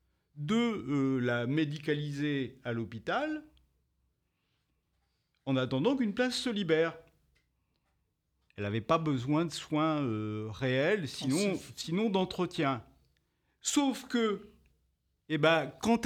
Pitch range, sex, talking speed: 120-170 Hz, male, 105 wpm